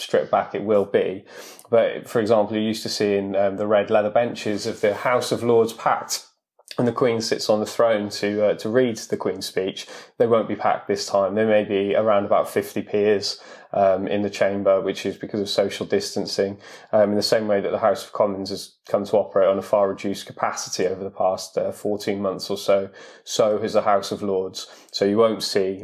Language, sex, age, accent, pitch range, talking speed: English, male, 20-39, British, 100-110 Hz, 230 wpm